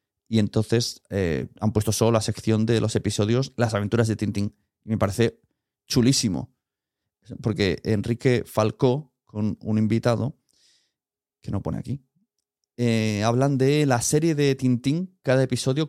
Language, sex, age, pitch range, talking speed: Spanish, male, 30-49, 110-135 Hz, 140 wpm